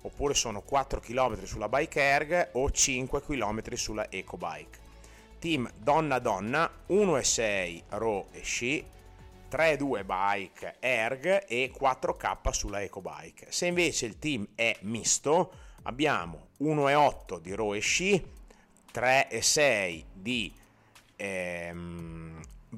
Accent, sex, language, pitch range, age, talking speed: native, male, Italian, 95-130 Hz, 30-49, 120 wpm